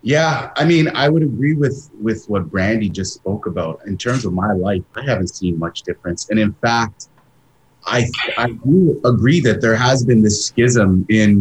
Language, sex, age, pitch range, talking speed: English, male, 30-49, 105-130 Hz, 195 wpm